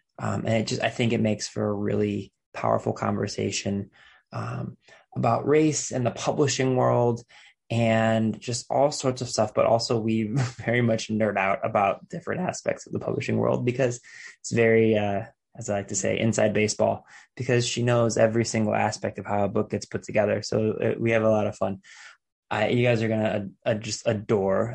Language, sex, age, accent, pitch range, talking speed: English, male, 20-39, American, 105-120 Hz, 190 wpm